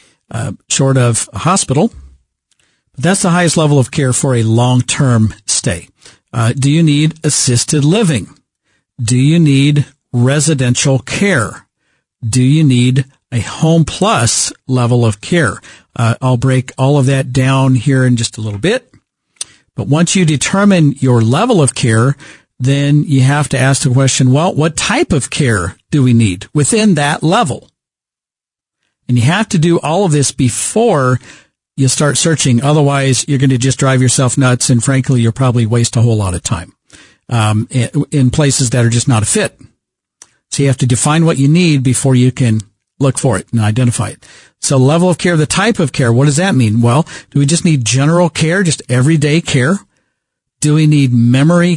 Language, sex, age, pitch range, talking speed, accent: English, male, 50-69, 125-155 Hz, 180 wpm, American